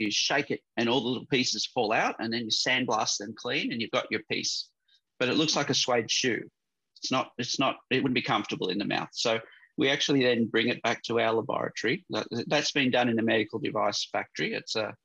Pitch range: 110-140 Hz